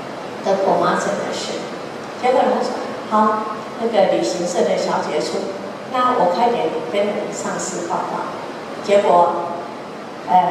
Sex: female